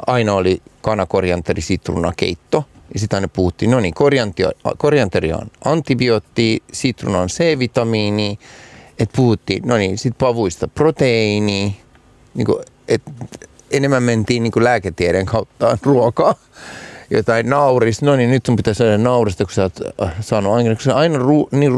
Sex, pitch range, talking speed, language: male, 90-115 Hz, 125 wpm, Finnish